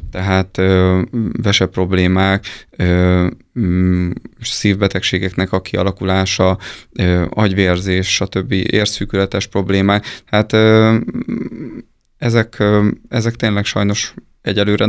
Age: 20-39